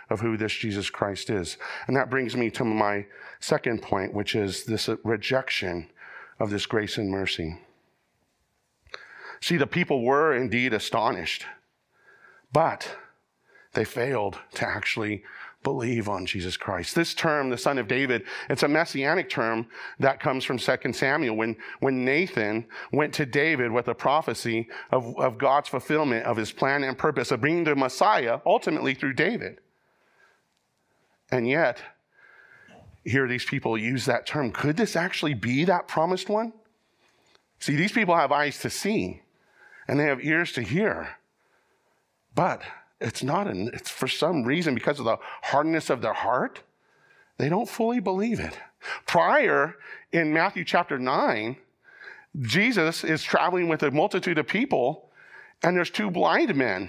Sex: male